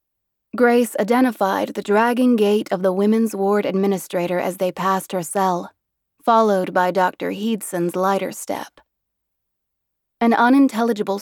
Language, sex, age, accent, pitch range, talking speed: English, female, 20-39, American, 190-215 Hz, 125 wpm